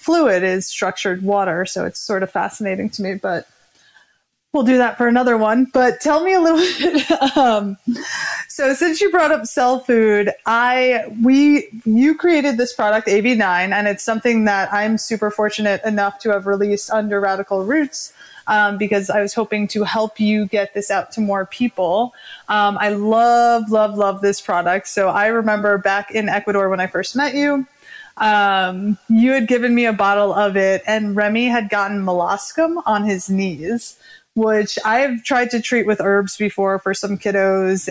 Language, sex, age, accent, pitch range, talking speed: English, female, 20-39, American, 200-240 Hz, 180 wpm